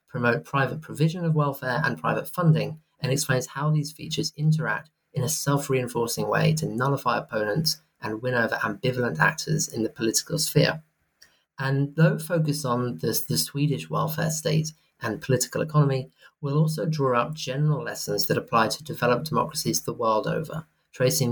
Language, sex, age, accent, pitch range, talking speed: English, male, 30-49, British, 130-160 Hz, 160 wpm